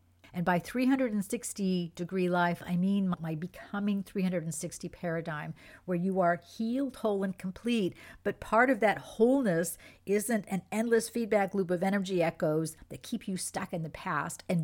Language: English